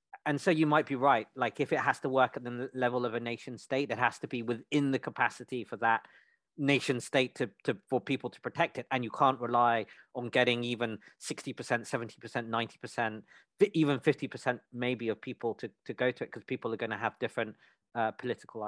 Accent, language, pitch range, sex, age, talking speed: British, English, 125-155 Hz, male, 40-59, 225 wpm